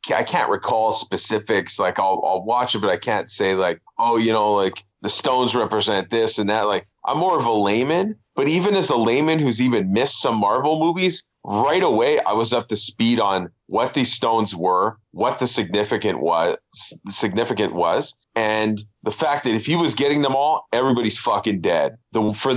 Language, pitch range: English, 110-155 Hz